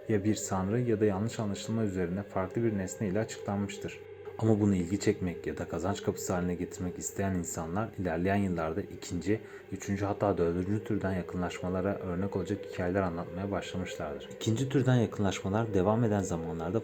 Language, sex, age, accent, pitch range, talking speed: Turkish, male, 30-49, native, 95-115 Hz, 155 wpm